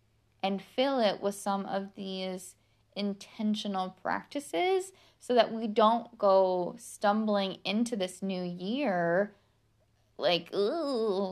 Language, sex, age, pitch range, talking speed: English, female, 10-29, 185-215 Hz, 110 wpm